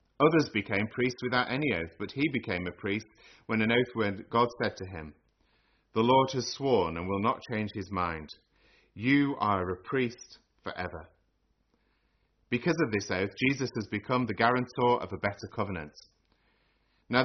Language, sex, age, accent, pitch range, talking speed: English, male, 30-49, British, 95-125 Hz, 165 wpm